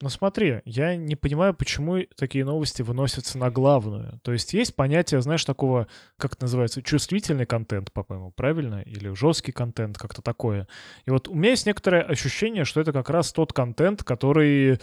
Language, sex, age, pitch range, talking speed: Russian, male, 20-39, 115-145 Hz, 175 wpm